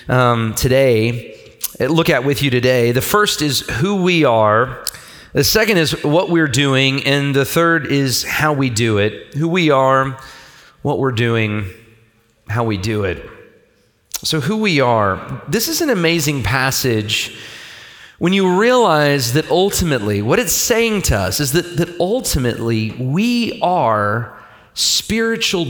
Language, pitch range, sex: English, 120-180 Hz, male